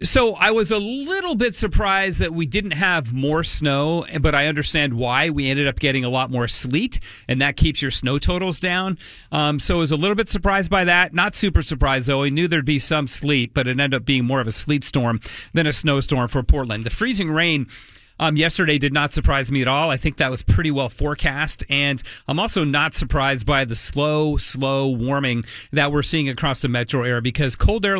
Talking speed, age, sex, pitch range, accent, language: 225 wpm, 40-59, male, 130-165 Hz, American, English